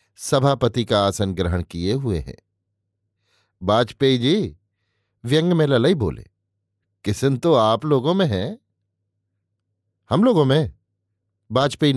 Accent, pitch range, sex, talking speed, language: native, 100-145 Hz, male, 115 wpm, Hindi